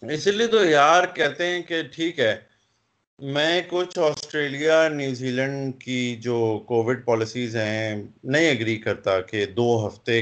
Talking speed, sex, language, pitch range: 145 wpm, male, Urdu, 120-170 Hz